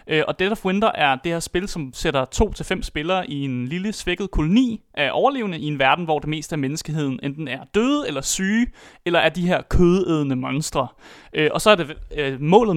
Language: Danish